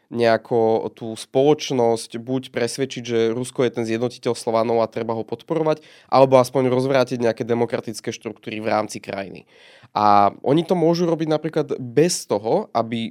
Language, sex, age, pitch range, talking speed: Slovak, male, 20-39, 115-145 Hz, 150 wpm